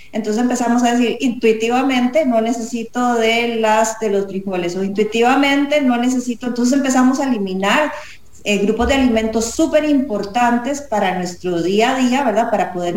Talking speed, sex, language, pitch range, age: 155 wpm, female, English, 195-250 Hz, 30-49